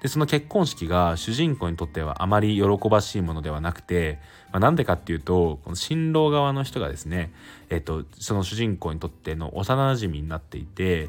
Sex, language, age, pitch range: male, Japanese, 20-39, 80-110 Hz